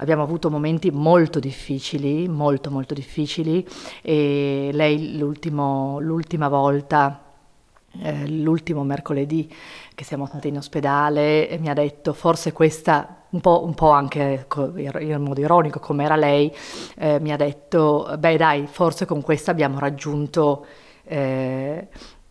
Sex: female